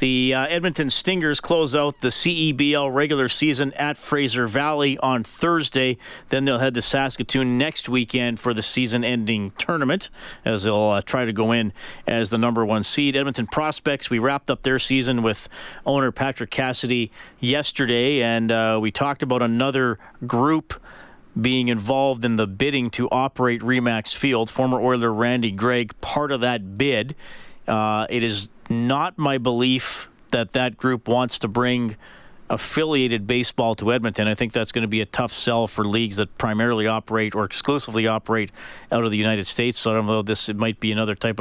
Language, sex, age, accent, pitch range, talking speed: English, male, 40-59, American, 110-135 Hz, 175 wpm